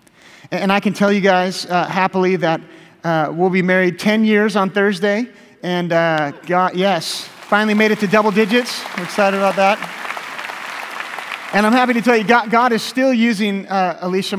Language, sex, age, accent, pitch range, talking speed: English, male, 30-49, American, 165-205 Hz, 180 wpm